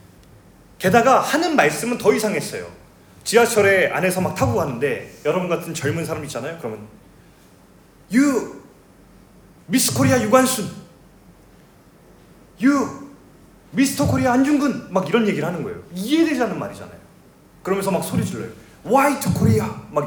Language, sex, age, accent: Korean, male, 30-49, native